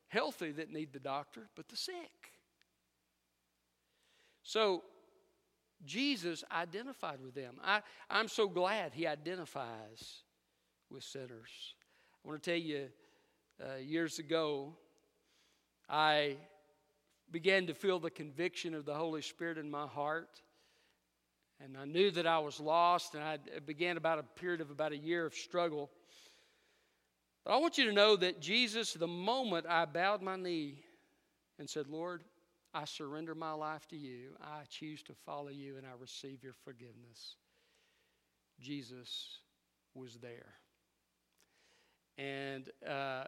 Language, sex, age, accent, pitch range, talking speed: English, male, 50-69, American, 140-195 Hz, 135 wpm